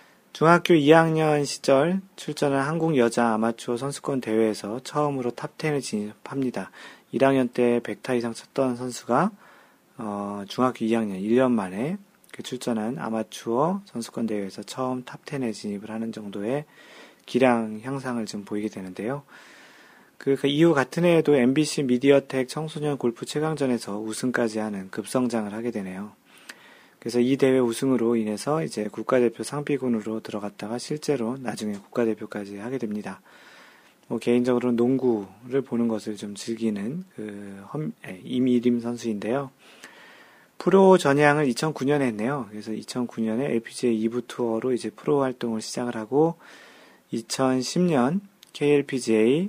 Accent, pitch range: native, 110-140 Hz